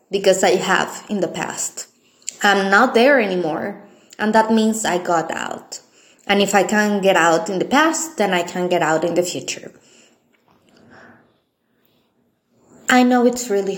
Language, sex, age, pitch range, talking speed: English, female, 20-39, 185-230 Hz, 160 wpm